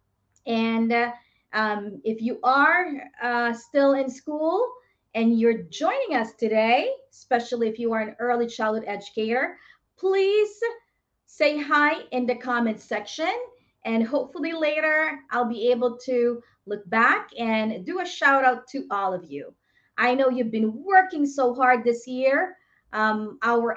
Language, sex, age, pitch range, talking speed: English, female, 30-49, 225-280 Hz, 150 wpm